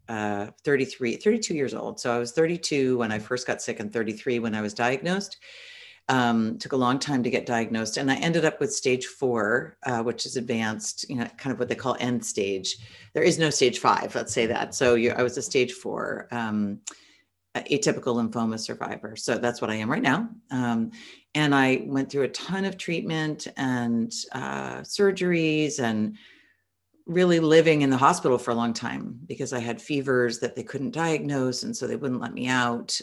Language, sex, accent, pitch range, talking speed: English, female, American, 115-165 Hz, 200 wpm